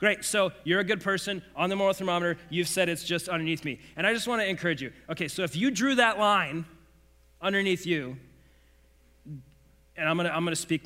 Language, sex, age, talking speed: English, male, 40-59, 220 wpm